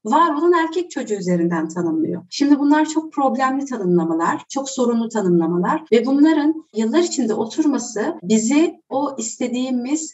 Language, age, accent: Turkish, 30-49, native